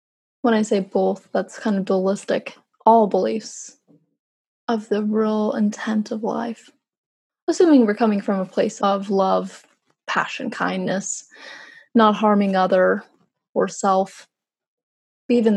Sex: female